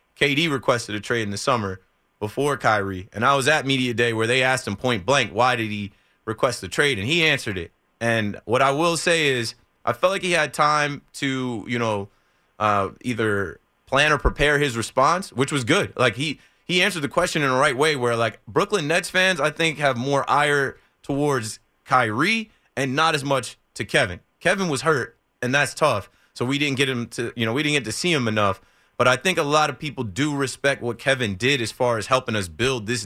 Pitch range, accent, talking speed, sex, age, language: 115-150 Hz, American, 225 wpm, male, 20-39, English